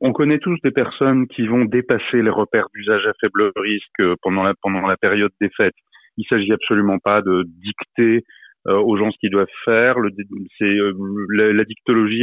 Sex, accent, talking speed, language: male, French, 180 wpm, French